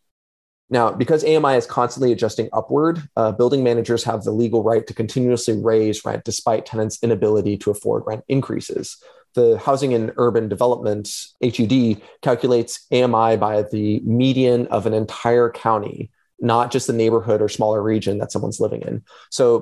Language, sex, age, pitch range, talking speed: English, male, 30-49, 105-125 Hz, 160 wpm